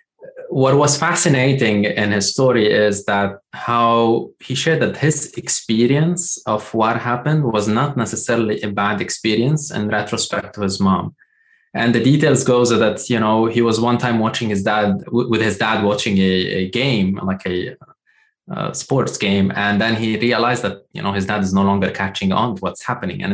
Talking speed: 185 wpm